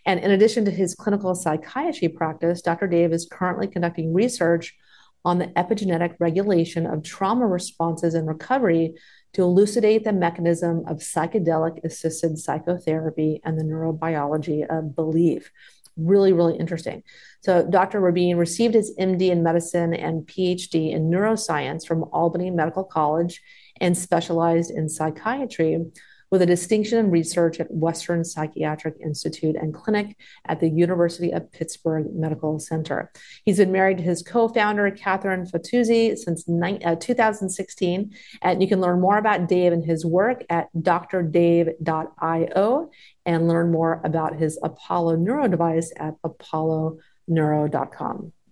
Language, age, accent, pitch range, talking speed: English, 40-59, American, 165-195 Hz, 135 wpm